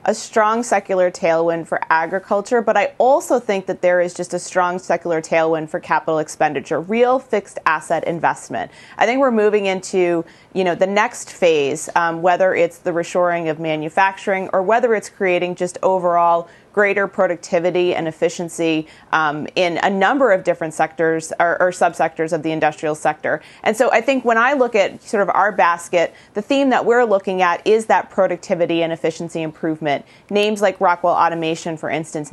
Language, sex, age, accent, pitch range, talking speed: English, female, 30-49, American, 170-215 Hz, 180 wpm